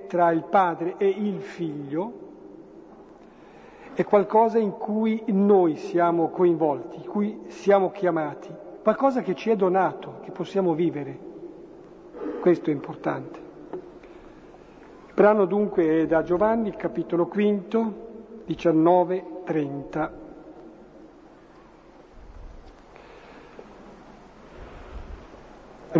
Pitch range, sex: 170-215 Hz, male